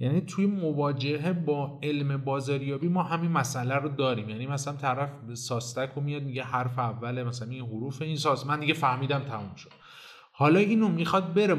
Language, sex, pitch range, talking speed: Persian, male, 135-170 Hz, 170 wpm